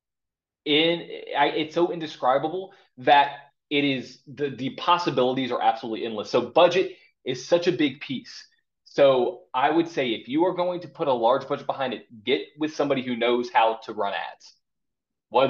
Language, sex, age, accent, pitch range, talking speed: English, male, 20-39, American, 125-165 Hz, 180 wpm